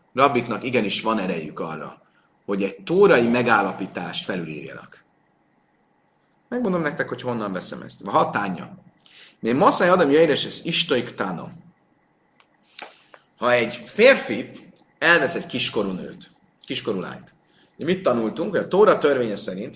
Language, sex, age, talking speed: Hungarian, male, 30-49, 125 wpm